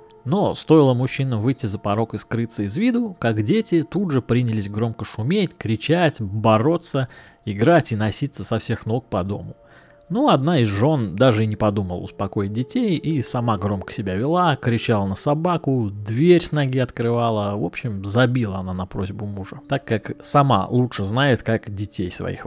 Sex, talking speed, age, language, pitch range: male, 170 wpm, 20-39, Russian, 105-145 Hz